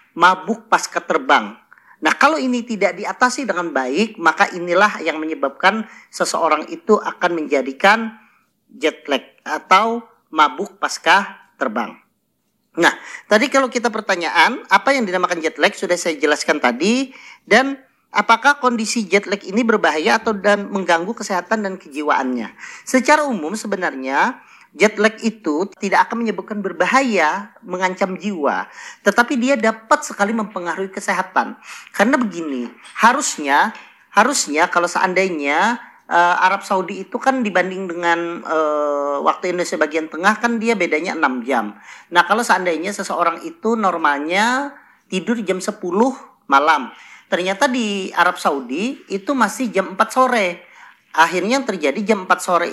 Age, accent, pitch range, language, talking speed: 40-59, native, 175-230 Hz, Indonesian, 130 wpm